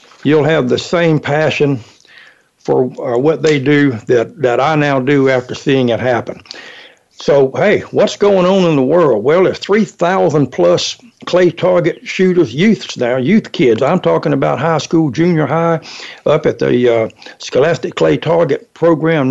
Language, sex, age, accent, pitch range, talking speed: English, male, 60-79, American, 135-170 Hz, 160 wpm